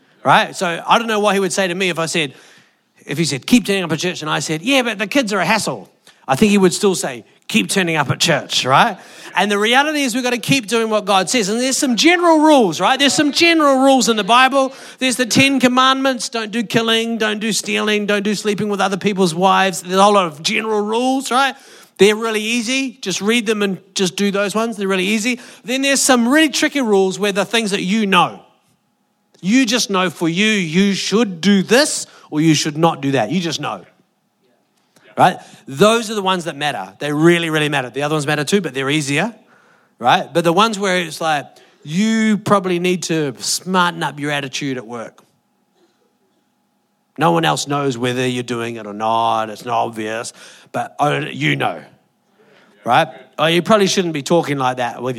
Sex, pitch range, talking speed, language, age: male, 165-230 Hz, 215 wpm, English, 40-59